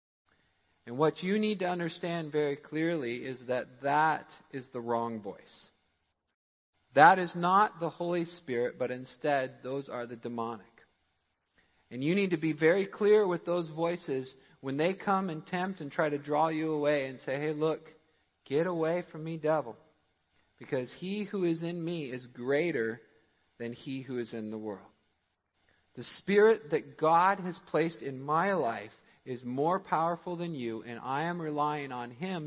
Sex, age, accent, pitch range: male, 50-69, American, 110-165 Hz